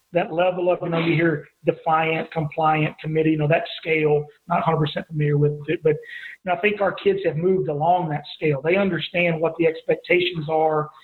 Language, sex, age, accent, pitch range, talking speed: English, male, 40-59, American, 155-185 Hz, 195 wpm